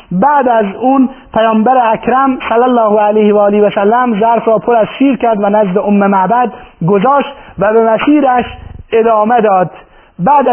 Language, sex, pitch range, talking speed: Persian, male, 200-235 Hz, 165 wpm